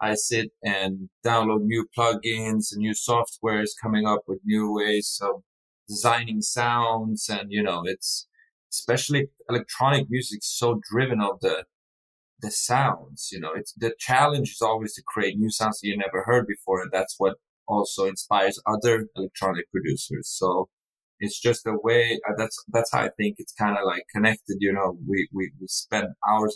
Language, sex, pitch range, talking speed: English, male, 105-120 Hz, 170 wpm